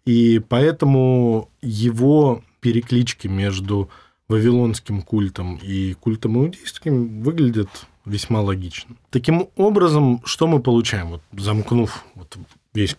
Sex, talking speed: male, 90 wpm